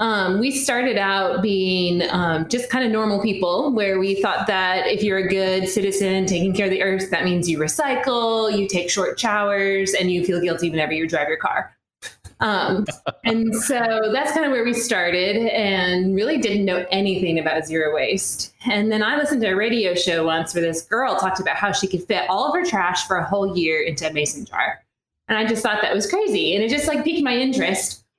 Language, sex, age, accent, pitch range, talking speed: English, female, 20-39, American, 180-225 Hz, 220 wpm